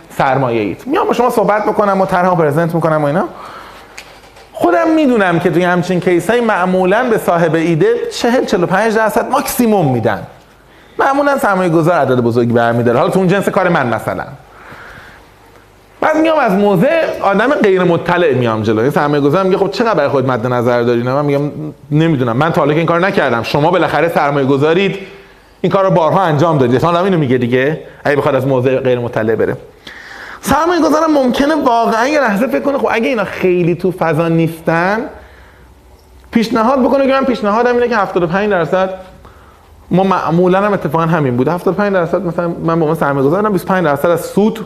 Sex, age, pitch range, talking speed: male, 30-49, 145-210 Hz, 175 wpm